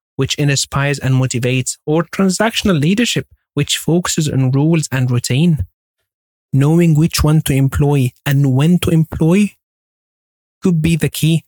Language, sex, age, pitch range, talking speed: English, male, 30-49, 140-160 Hz, 135 wpm